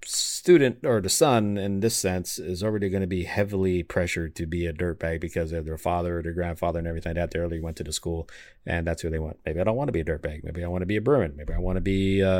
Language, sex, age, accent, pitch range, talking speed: English, male, 40-59, American, 80-95 Hz, 300 wpm